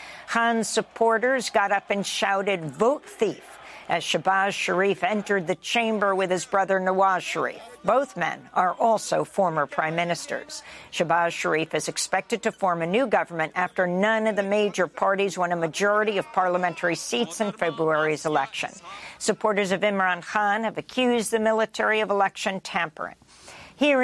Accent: American